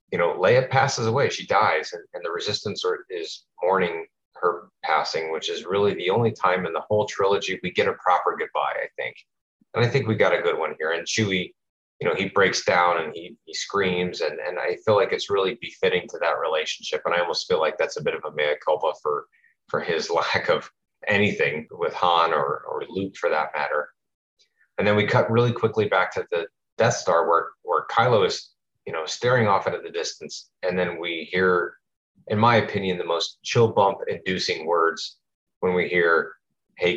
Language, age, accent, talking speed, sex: English, 30-49, American, 210 wpm, male